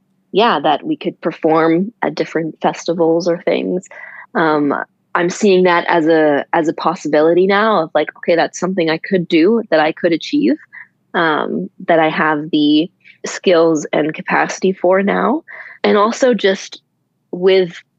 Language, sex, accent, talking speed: English, female, American, 155 wpm